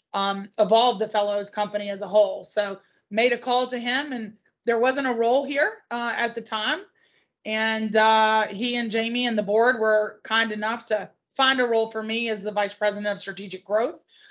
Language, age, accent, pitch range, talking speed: English, 20-39, American, 205-225 Hz, 200 wpm